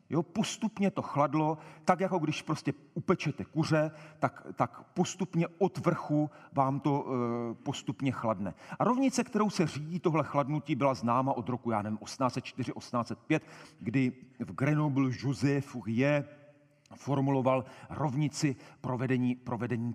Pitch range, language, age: 125-170 Hz, Czech, 40-59